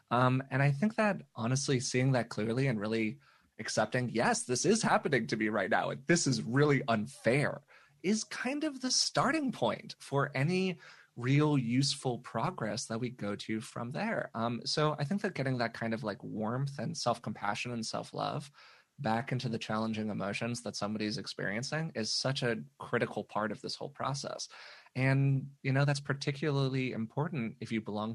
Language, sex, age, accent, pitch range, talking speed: English, male, 20-39, American, 110-140 Hz, 175 wpm